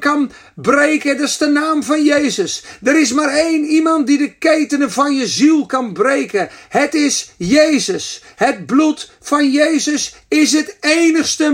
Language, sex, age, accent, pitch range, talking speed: Dutch, male, 50-69, Dutch, 280-325 Hz, 160 wpm